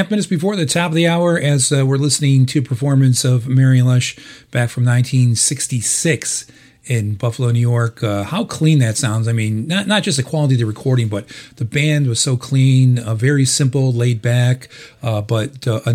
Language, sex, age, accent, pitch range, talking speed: English, male, 40-59, American, 125-155 Hz, 200 wpm